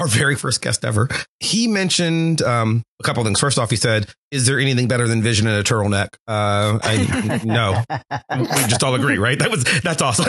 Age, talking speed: 30-49, 215 wpm